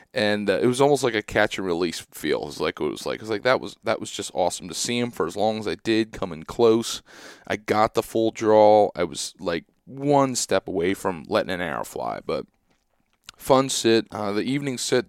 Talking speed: 245 wpm